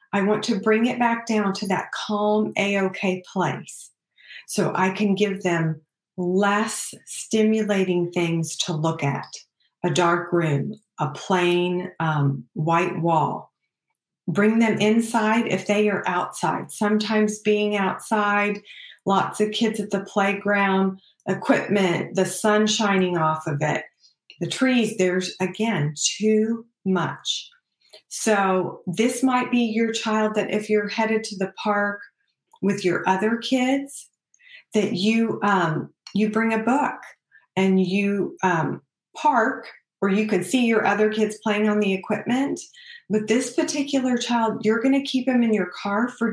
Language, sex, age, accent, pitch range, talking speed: English, female, 40-59, American, 185-225 Hz, 145 wpm